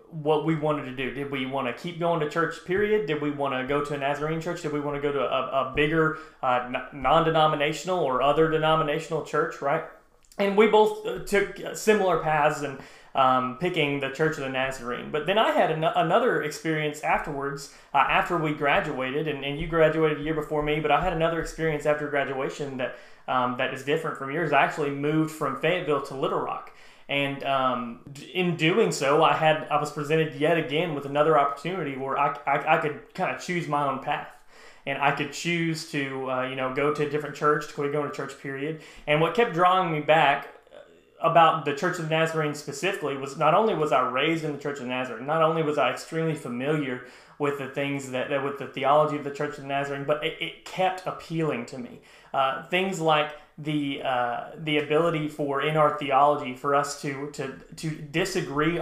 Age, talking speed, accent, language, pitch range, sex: 30-49, 210 wpm, American, English, 140-155 Hz, male